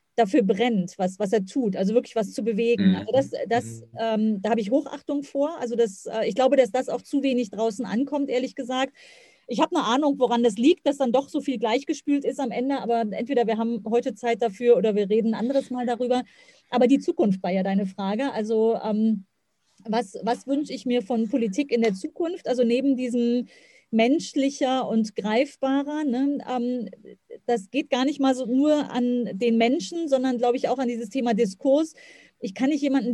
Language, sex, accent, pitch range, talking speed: German, female, German, 225-270 Hz, 205 wpm